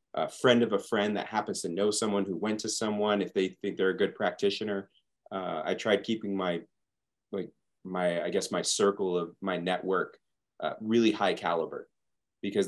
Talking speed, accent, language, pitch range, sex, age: 190 wpm, American, English, 90-105 Hz, male, 30-49